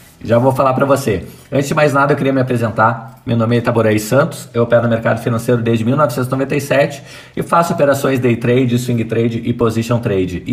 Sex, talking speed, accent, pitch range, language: male, 205 wpm, Brazilian, 120-140 Hz, Portuguese